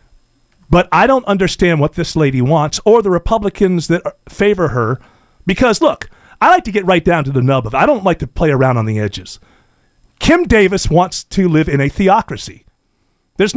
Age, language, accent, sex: 40-59, English, American, male